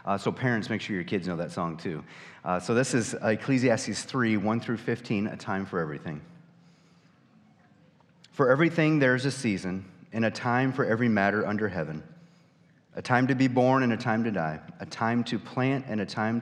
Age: 40-59